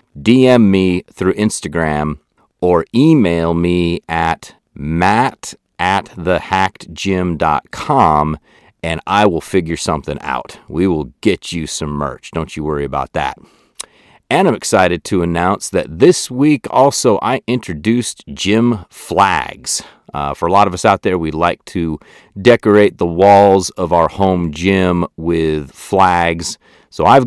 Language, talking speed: English, 140 wpm